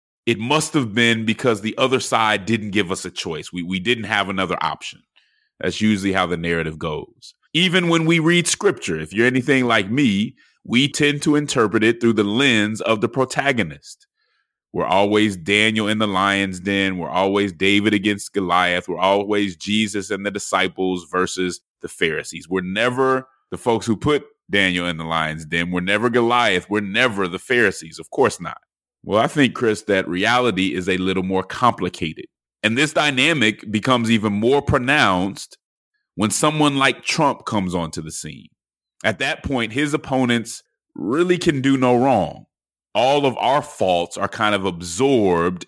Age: 30-49